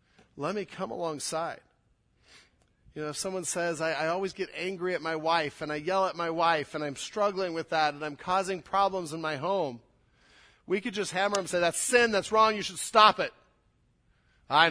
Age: 40-59